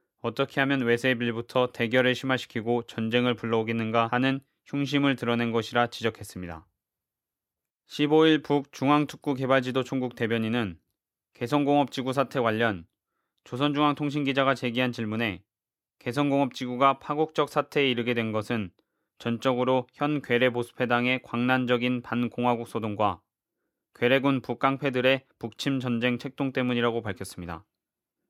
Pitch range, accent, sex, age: 115-135 Hz, native, male, 20-39